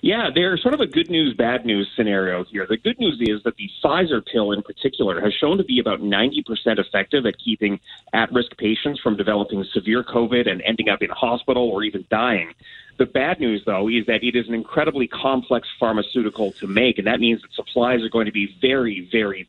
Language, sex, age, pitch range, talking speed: English, male, 30-49, 105-130 Hz, 215 wpm